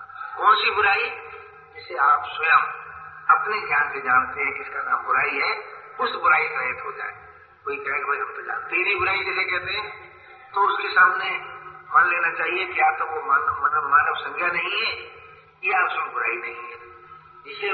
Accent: native